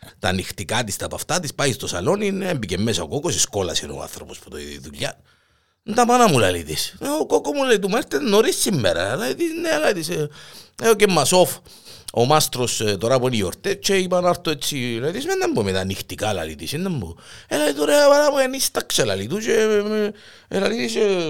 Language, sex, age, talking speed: Greek, male, 50-69, 175 wpm